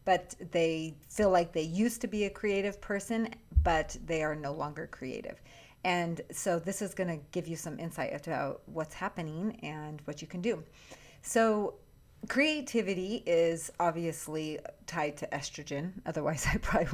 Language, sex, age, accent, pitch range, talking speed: English, female, 30-49, American, 155-190 Hz, 155 wpm